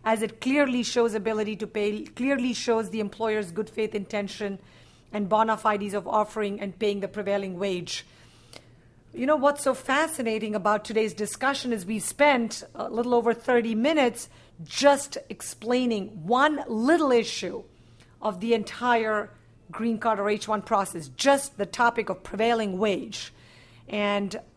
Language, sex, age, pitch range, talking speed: English, female, 50-69, 205-235 Hz, 145 wpm